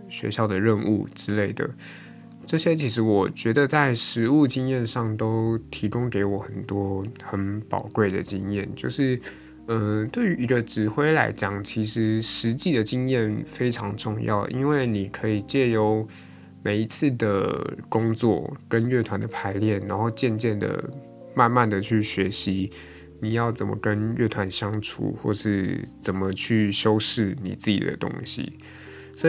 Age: 20-39